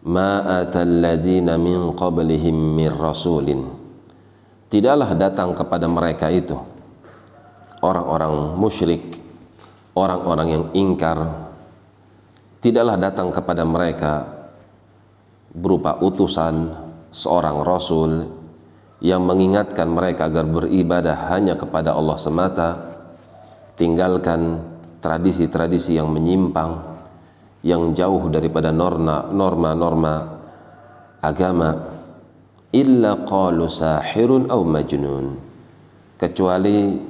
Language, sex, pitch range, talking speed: Indonesian, male, 80-95 Hz, 70 wpm